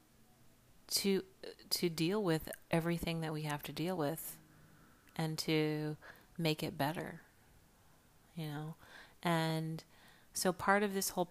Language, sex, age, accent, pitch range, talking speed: English, female, 30-49, American, 150-170 Hz, 125 wpm